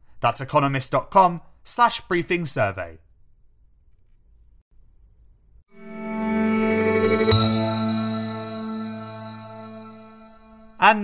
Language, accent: English, British